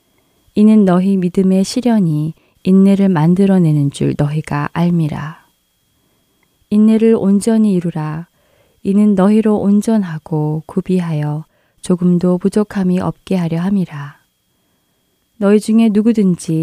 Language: Korean